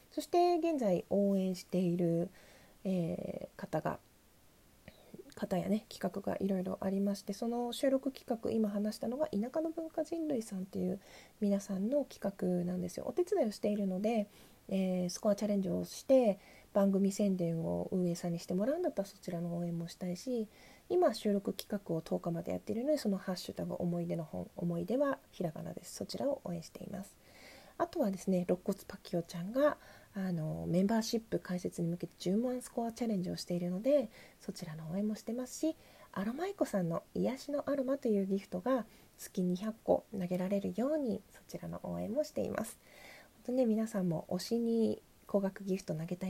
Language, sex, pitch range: Japanese, female, 180-235 Hz